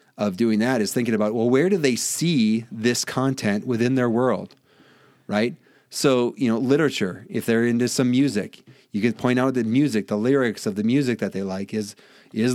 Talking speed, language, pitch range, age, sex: 200 wpm, English, 100-125 Hz, 40-59, male